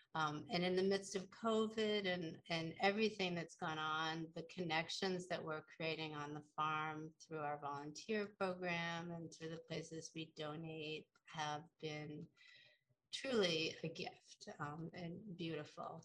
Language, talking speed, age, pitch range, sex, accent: English, 145 wpm, 30-49, 160-210 Hz, female, American